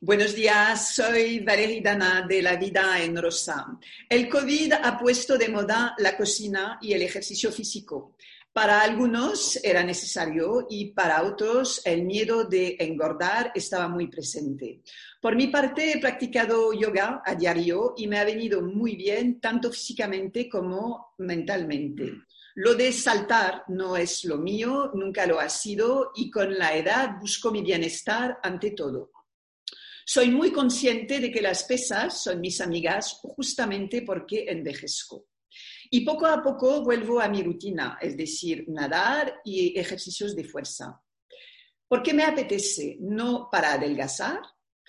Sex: female